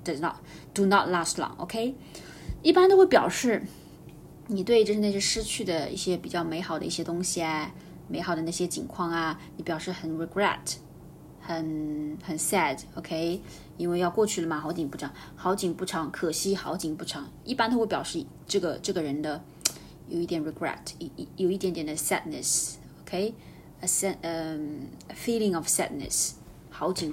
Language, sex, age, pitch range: Chinese, female, 20-39, 160-190 Hz